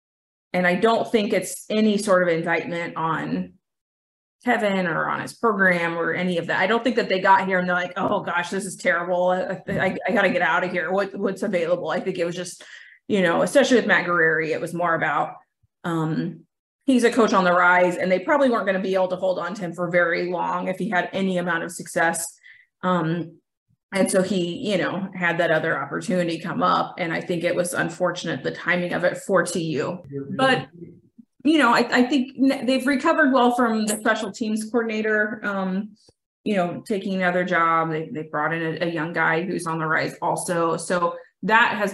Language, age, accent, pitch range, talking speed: English, 30-49, American, 170-210 Hz, 215 wpm